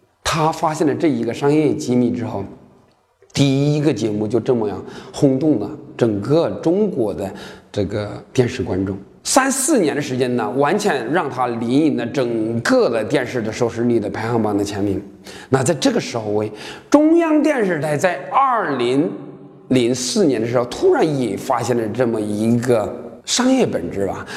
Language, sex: Chinese, male